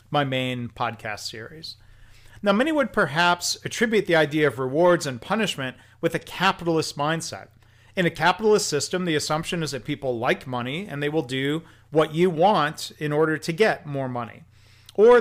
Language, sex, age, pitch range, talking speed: English, male, 40-59, 120-160 Hz, 175 wpm